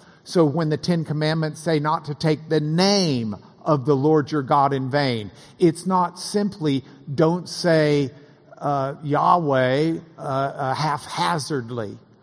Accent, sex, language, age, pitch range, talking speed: American, male, English, 50-69, 145-185 Hz, 135 wpm